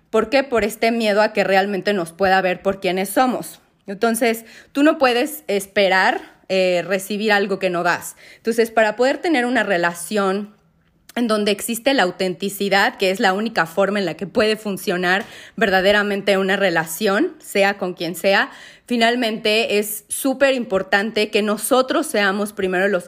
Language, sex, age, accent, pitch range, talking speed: Spanish, female, 30-49, Mexican, 190-230 Hz, 160 wpm